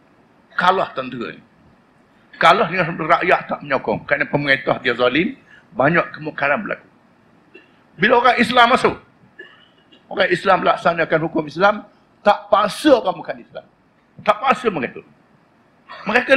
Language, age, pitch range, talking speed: Malay, 50-69, 165-230 Hz, 120 wpm